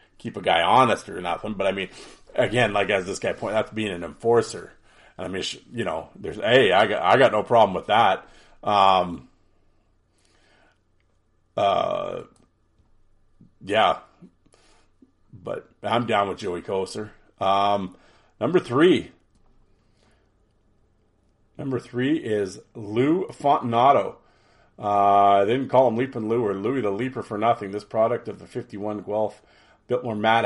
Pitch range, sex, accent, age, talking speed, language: 100-115 Hz, male, American, 40-59, 140 wpm, English